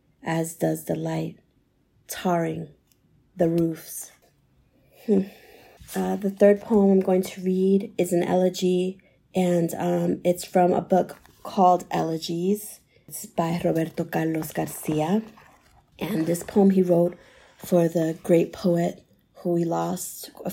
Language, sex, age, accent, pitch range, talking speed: English, female, 30-49, American, 165-185 Hz, 130 wpm